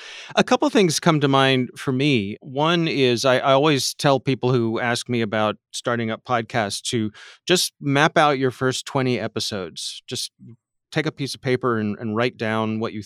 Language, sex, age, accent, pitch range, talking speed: English, male, 30-49, American, 115-135 Hz, 200 wpm